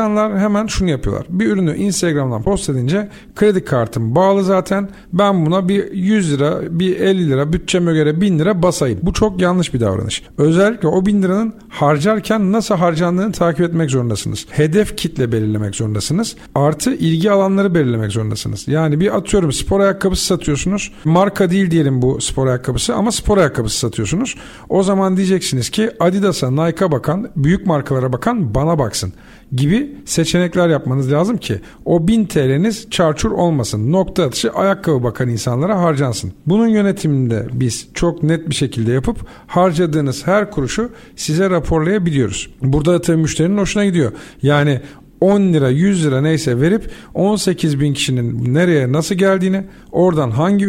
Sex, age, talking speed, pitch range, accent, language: male, 50-69, 150 wpm, 140-195 Hz, native, Turkish